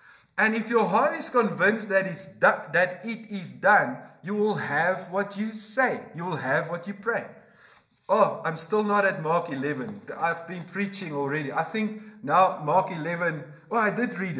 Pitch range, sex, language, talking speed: 180-230 Hz, male, English, 190 wpm